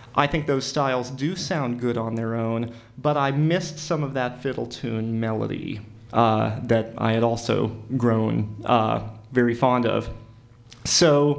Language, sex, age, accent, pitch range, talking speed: English, male, 30-49, American, 115-135 Hz, 155 wpm